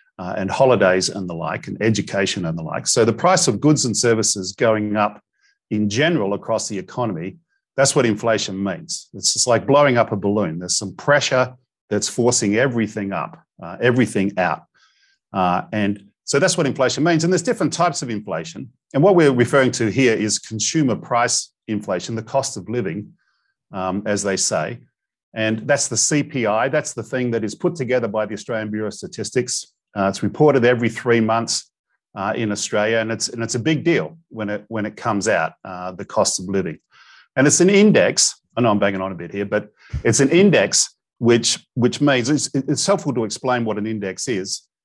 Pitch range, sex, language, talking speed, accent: 105-140 Hz, male, English, 200 wpm, Australian